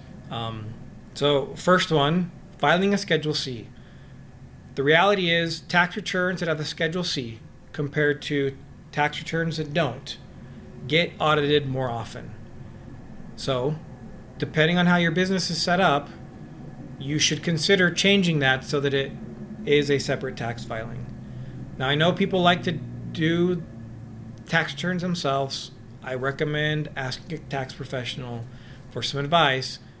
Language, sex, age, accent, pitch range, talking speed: English, male, 40-59, American, 125-155 Hz, 140 wpm